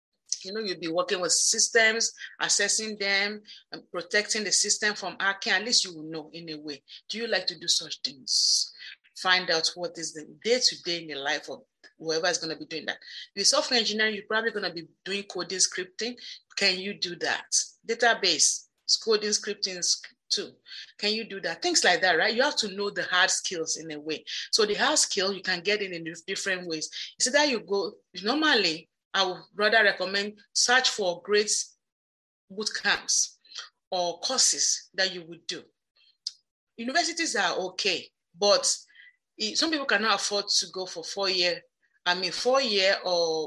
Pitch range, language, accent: 175-220 Hz, English, Nigerian